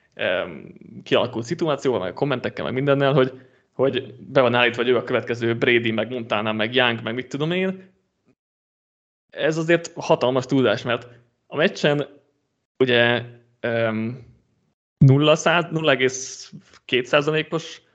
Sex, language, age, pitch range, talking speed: male, Hungarian, 30-49, 120-155 Hz, 115 wpm